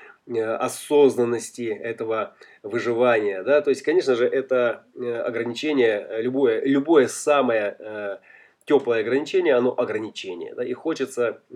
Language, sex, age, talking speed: Russian, male, 20-39, 105 wpm